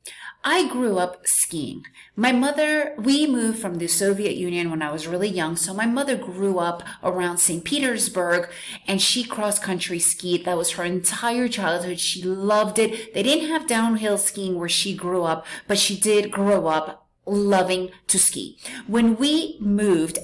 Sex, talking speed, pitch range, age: female, 170 wpm, 180-225 Hz, 30-49